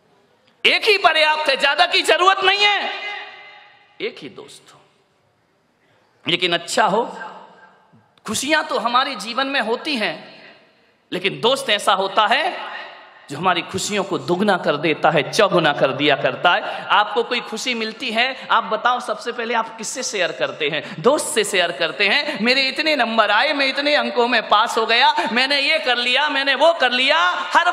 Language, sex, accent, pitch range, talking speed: Hindi, male, native, 180-290 Hz, 170 wpm